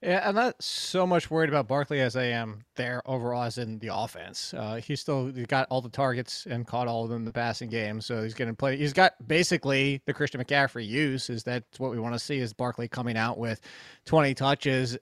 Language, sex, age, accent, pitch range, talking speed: English, male, 20-39, American, 125-170 Hz, 235 wpm